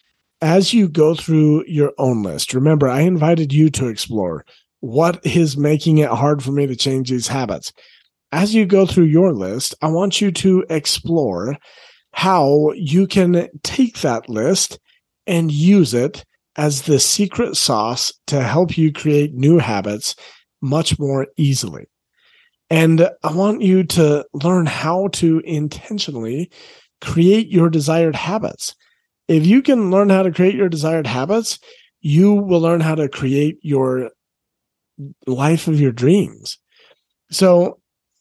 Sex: male